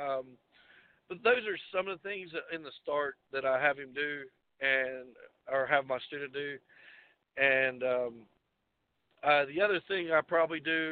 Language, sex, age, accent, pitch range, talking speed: English, male, 50-69, American, 130-160 Hz, 175 wpm